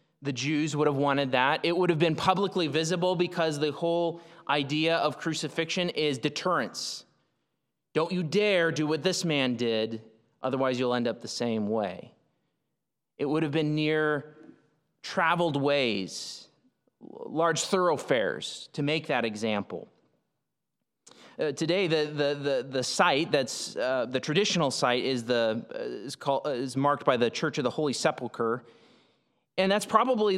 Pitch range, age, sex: 125-165 Hz, 30-49, male